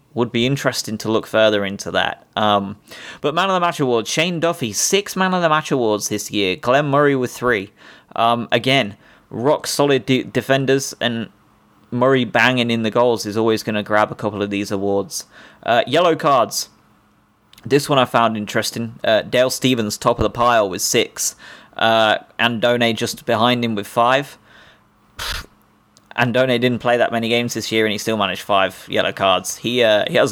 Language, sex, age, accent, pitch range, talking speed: English, male, 20-39, British, 110-135 Hz, 185 wpm